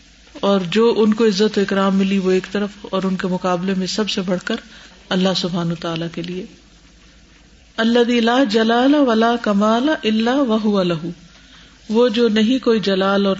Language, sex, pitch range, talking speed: Urdu, female, 180-225 Hz, 160 wpm